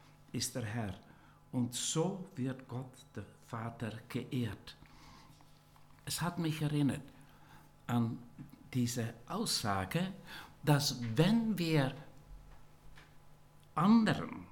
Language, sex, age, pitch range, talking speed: German, male, 60-79, 125-170 Hz, 85 wpm